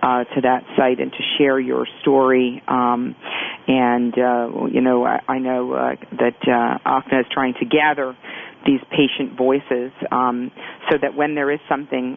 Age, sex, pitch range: 40-59, female, 125-145 Hz